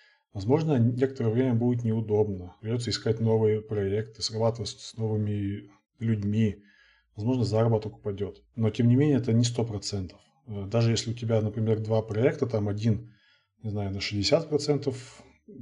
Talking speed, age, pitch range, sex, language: 140 wpm, 20-39, 105-125 Hz, male, Russian